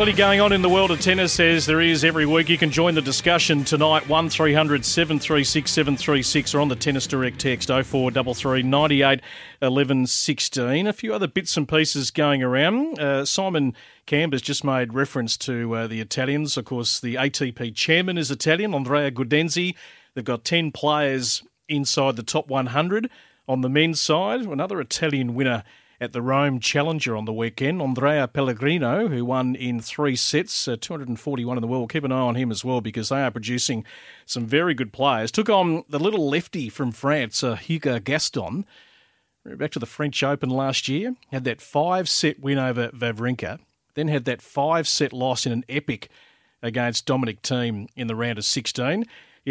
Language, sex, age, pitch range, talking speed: English, male, 40-59, 125-155 Hz, 180 wpm